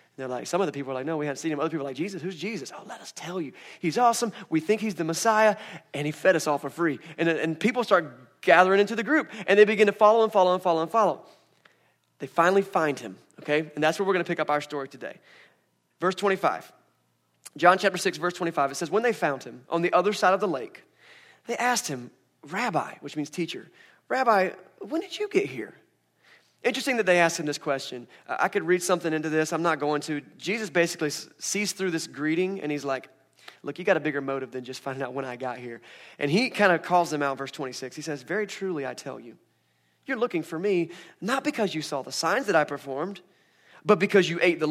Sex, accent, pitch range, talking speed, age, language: male, American, 145-195 Hz, 245 wpm, 30-49, English